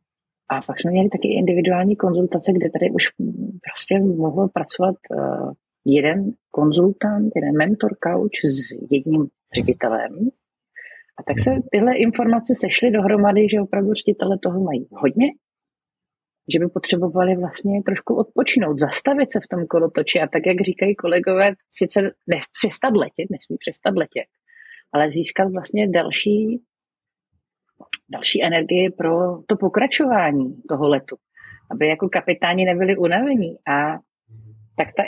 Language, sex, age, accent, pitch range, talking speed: Czech, female, 40-59, native, 160-210 Hz, 125 wpm